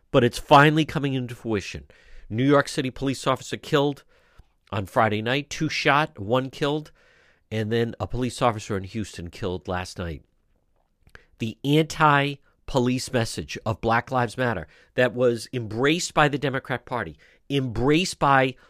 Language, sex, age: English, male, 50-69